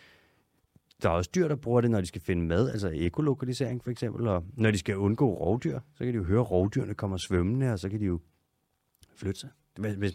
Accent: Danish